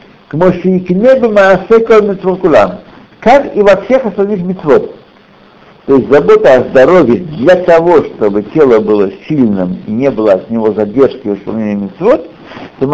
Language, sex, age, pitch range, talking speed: Russian, male, 60-79, 130-215 Hz, 160 wpm